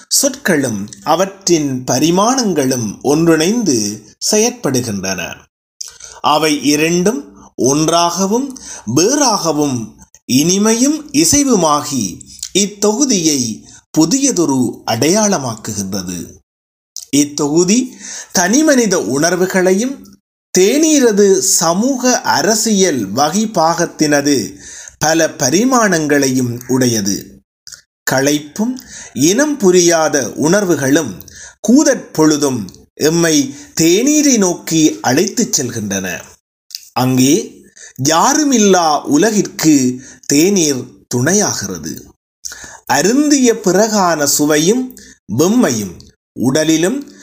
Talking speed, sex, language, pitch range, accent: 55 wpm, male, Tamil, 145-230 Hz, native